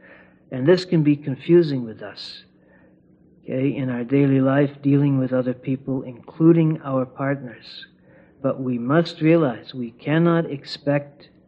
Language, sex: English, male